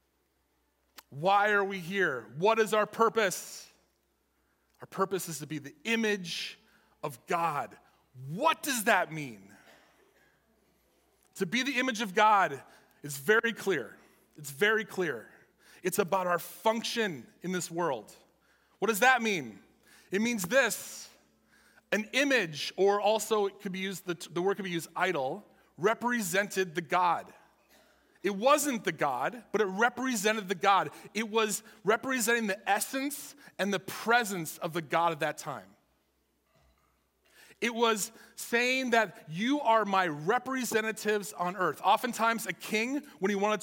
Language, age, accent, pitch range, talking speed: English, 30-49, American, 175-225 Hz, 135 wpm